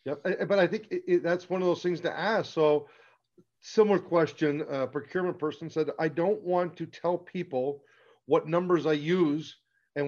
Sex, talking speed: male, 165 wpm